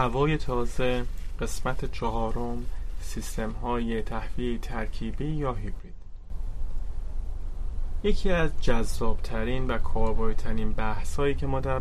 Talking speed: 90 wpm